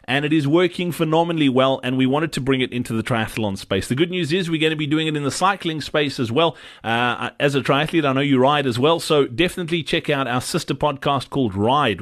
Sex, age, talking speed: male, 30-49, 255 wpm